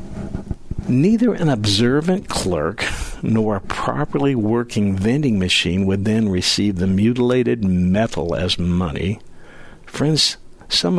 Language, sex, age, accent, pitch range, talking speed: English, male, 60-79, American, 95-130 Hz, 110 wpm